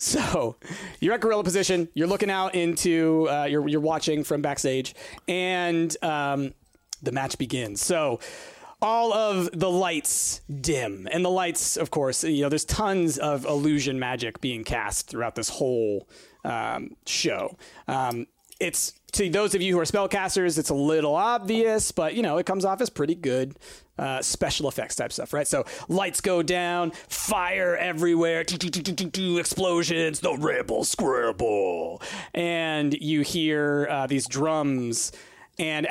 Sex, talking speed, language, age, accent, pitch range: male, 160 wpm, English, 30-49, American, 140-180 Hz